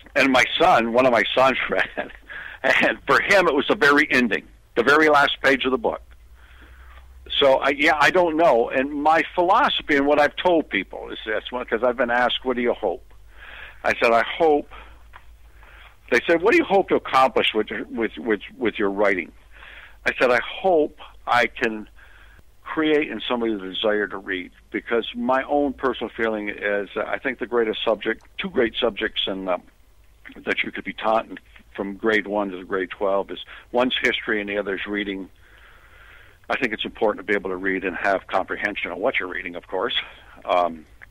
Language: English